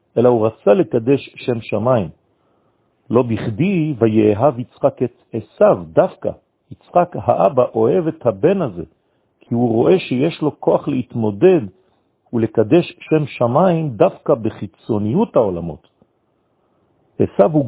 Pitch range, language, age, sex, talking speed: 110-150 Hz, French, 50-69, male, 110 wpm